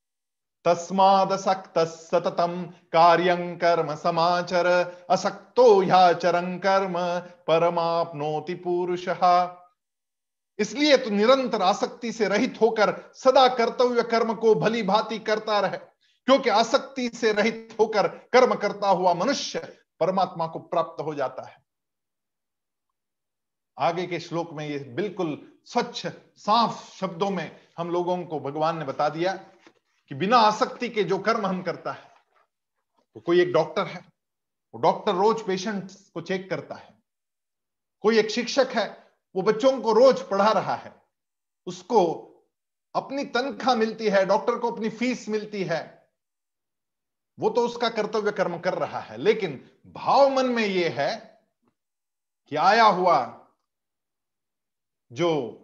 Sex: male